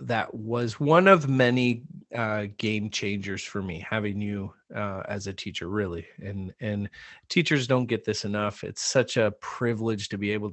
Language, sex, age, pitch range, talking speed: English, male, 30-49, 105-130 Hz, 175 wpm